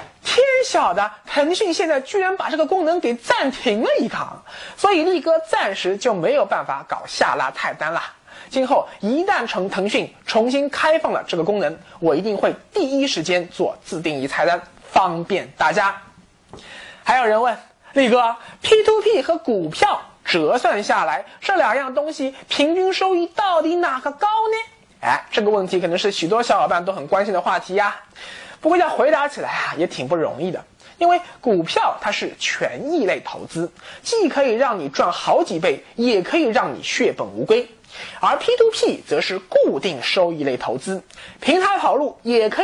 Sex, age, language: male, 20-39, Chinese